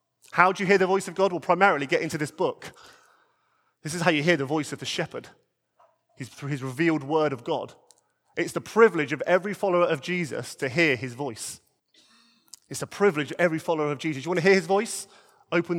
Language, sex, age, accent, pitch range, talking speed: English, male, 30-49, British, 160-210 Hz, 220 wpm